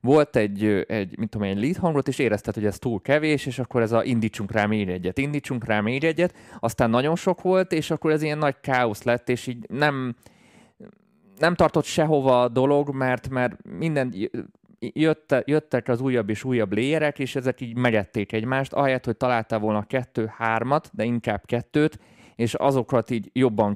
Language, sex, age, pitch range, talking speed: Hungarian, male, 20-39, 105-135 Hz, 175 wpm